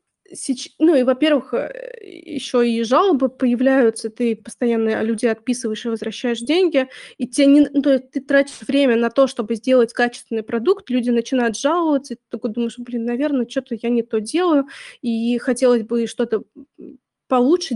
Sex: female